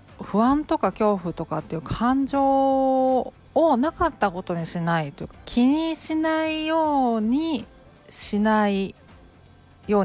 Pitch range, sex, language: 175-255 Hz, female, Japanese